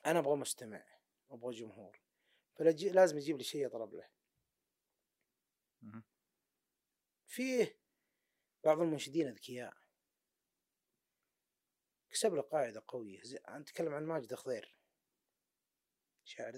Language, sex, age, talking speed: Arabic, male, 30-49, 90 wpm